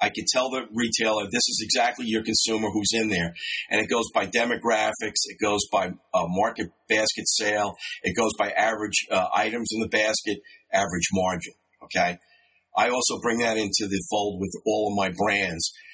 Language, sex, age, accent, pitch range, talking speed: English, male, 50-69, American, 100-115 Hz, 185 wpm